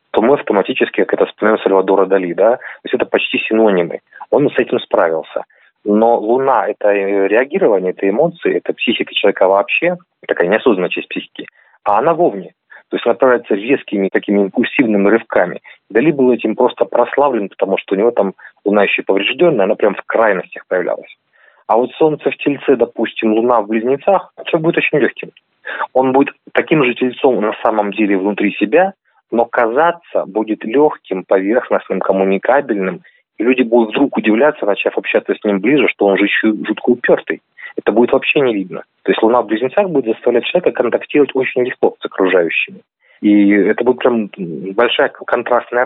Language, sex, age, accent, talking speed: Russian, male, 30-49, native, 170 wpm